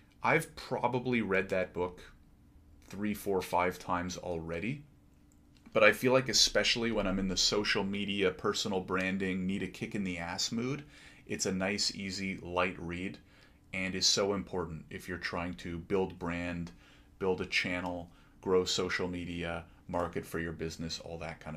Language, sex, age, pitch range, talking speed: English, male, 30-49, 85-100 Hz, 165 wpm